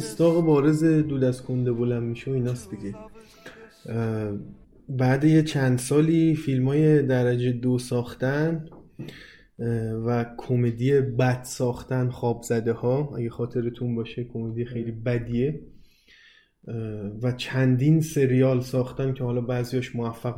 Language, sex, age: Persian, male, 20-39